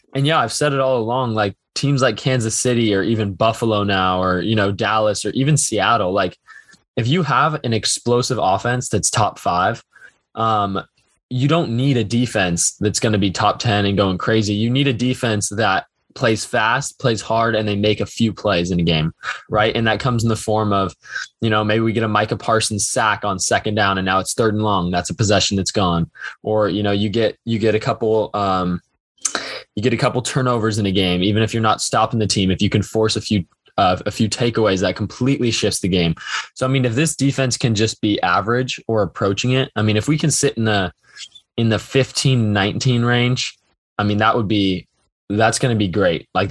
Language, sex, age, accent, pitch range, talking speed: English, male, 20-39, American, 105-125 Hz, 225 wpm